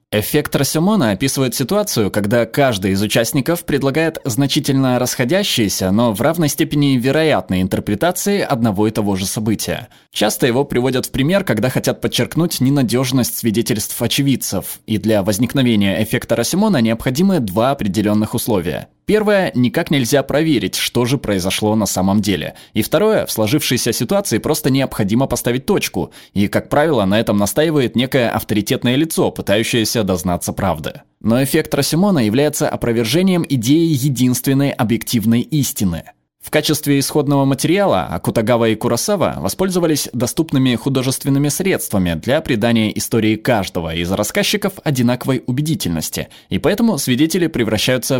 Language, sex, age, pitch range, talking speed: Russian, male, 20-39, 110-145 Hz, 130 wpm